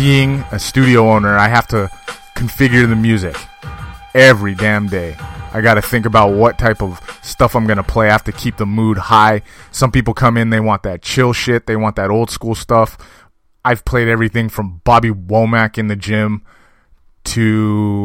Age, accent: 20-39, American